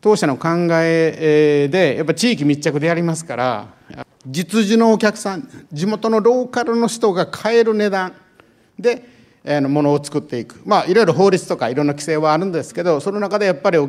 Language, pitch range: Japanese, 140-195 Hz